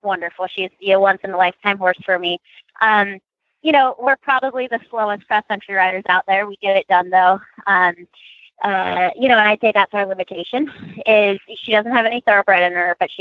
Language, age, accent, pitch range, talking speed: English, 20-39, American, 180-210 Hz, 200 wpm